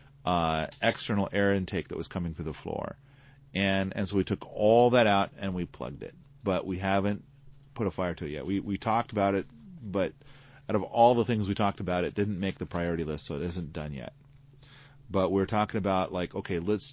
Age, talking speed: 40-59, 225 wpm